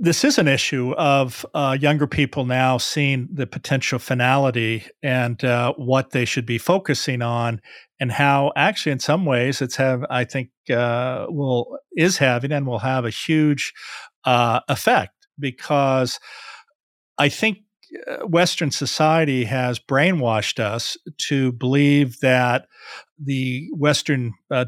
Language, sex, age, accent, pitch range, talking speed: English, male, 50-69, American, 125-150 Hz, 135 wpm